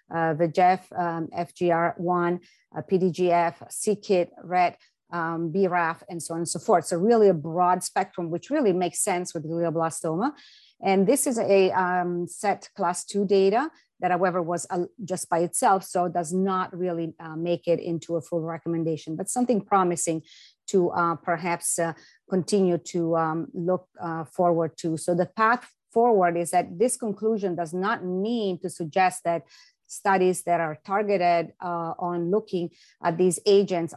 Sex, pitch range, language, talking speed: female, 170-195 Hz, English, 165 wpm